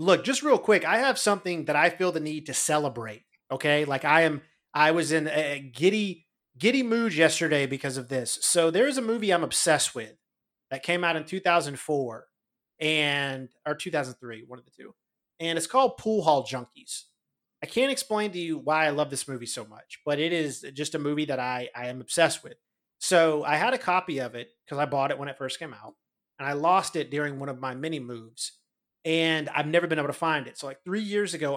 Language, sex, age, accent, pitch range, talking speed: English, male, 30-49, American, 135-170 Hz, 220 wpm